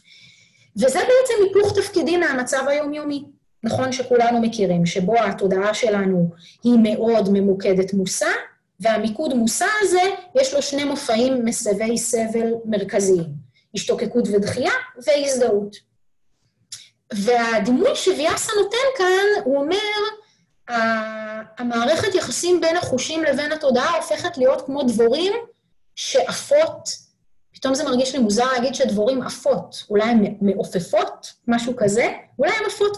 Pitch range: 225-350 Hz